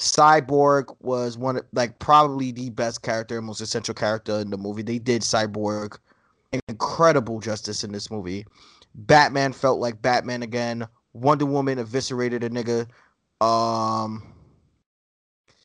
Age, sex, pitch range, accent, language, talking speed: 20-39, male, 115-145 Hz, American, English, 130 wpm